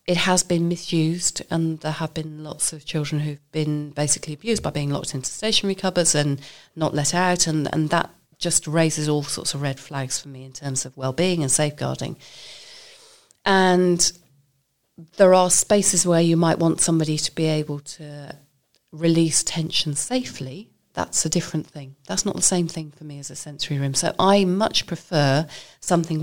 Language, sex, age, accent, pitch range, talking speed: English, female, 40-59, British, 150-185 Hz, 180 wpm